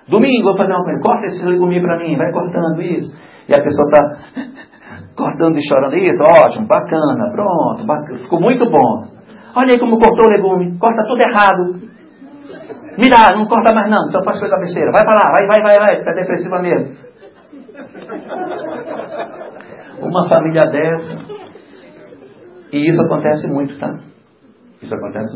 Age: 60-79